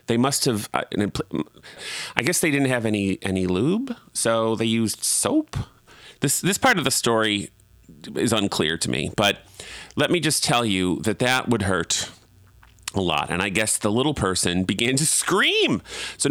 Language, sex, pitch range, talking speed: English, male, 95-145 Hz, 175 wpm